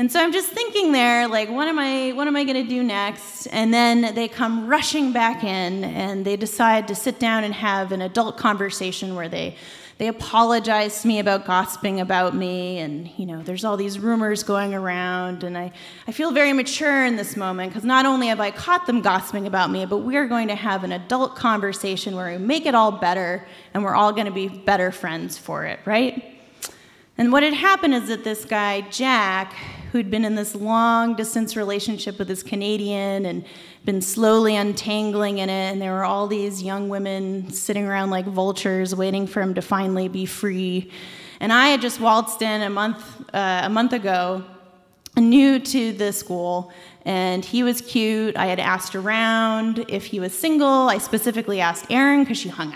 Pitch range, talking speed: 190-230 Hz, 200 wpm